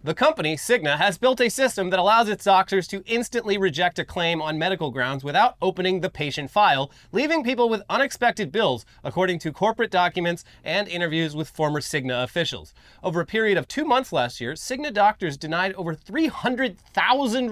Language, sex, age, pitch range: English, male, 30-49, 130-195 Hz